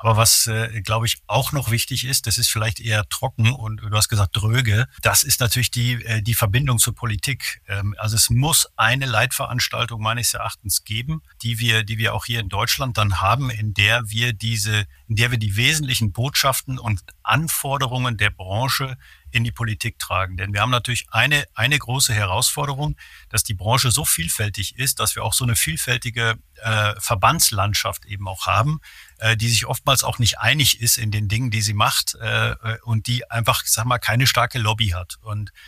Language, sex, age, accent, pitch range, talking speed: German, male, 50-69, German, 110-125 Hz, 195 wpm